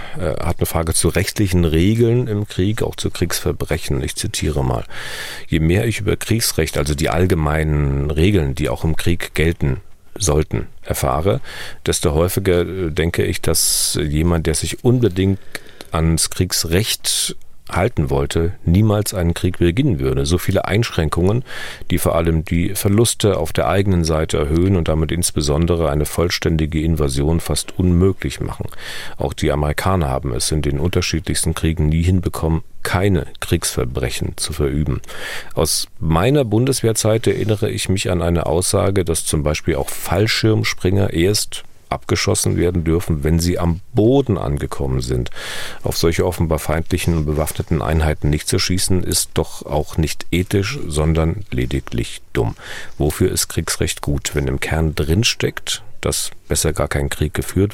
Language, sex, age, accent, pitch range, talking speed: German, male, 40-59, German, 75-95 Hz, 145 wpm